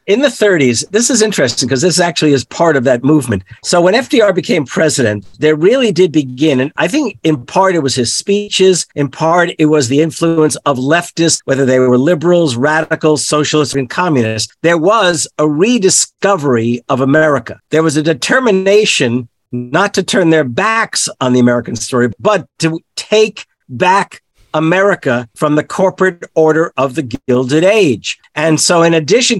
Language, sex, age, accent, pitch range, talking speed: English, male, 50-69, American, 140-185 Hz, 170 wpm